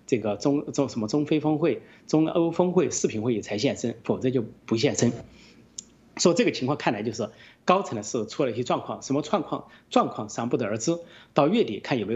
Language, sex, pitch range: Chinese, male, 120-165 Hz